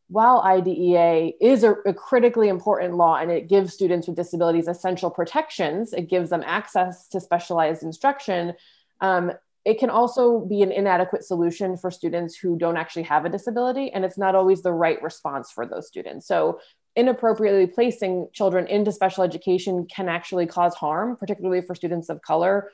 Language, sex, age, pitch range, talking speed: English, female, 20-39, 170-200 Hz, 170 wpm